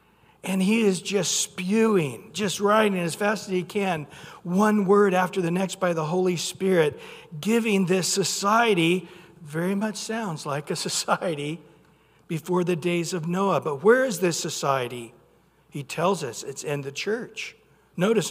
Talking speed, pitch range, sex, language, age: 155 wpm, 145-190 Hz, male, English, 60-79